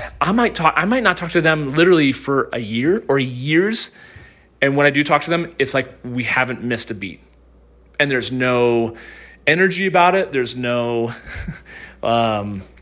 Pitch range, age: 120-160 Hz, 30-49